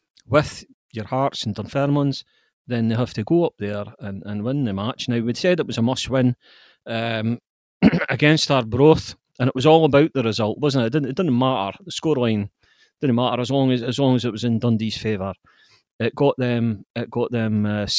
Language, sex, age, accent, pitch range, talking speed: English, male, 40-59, British, 110-140 Hz, 215 wpm